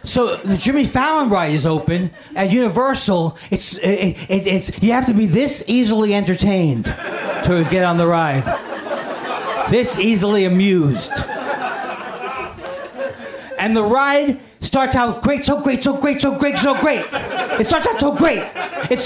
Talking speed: 145 wpm